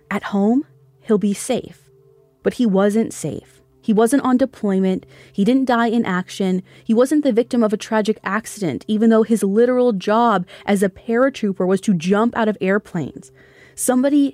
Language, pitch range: English, 170-225 Hz